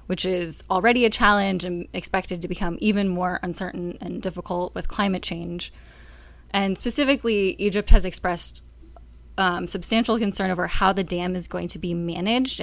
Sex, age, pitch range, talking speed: female, 20-39, 170-195 Hz, 160 wpm